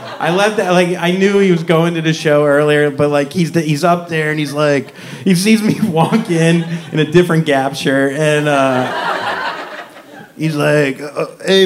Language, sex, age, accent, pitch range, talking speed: English, male, 30-49, American, 130-180 Hz, 200 wpm